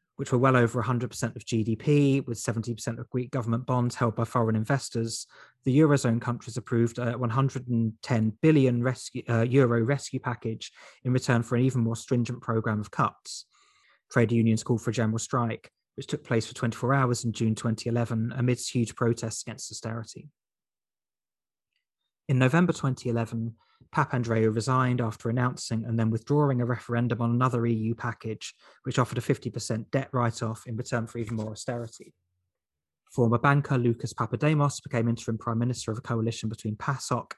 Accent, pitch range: British, 115-130 Hz